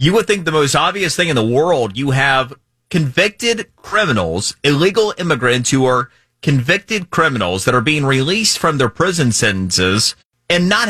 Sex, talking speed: male, 165 wpm